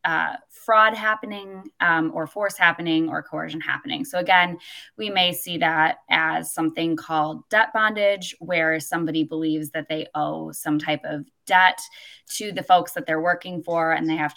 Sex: female